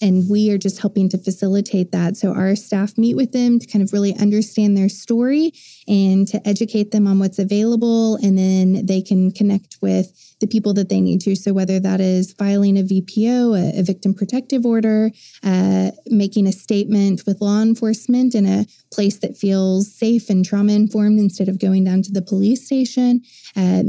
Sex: female